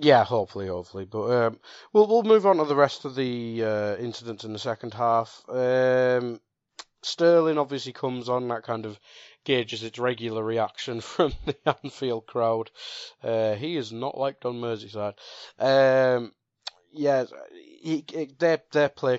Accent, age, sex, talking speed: British, 20-39, male, 155 wpm